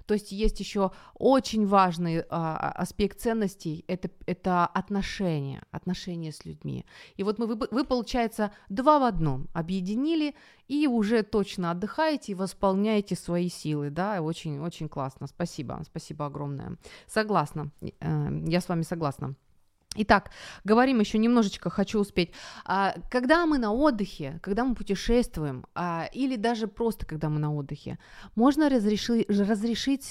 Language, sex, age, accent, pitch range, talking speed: Ukrainian, female, 20-39, native, 175-235 Hz, 140 wpm